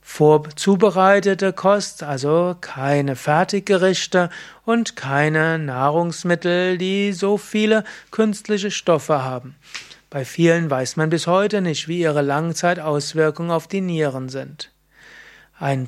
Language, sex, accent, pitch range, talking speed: German, male, German, 150-185 Hz, 110 wpm